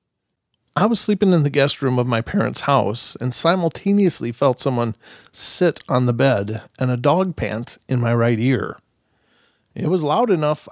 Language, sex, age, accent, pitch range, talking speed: English, male, 40-59, American, 125-175 Hz, 175 wpm